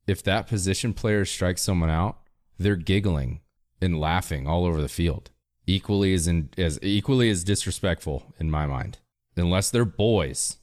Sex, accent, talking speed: male, American, 160 wpm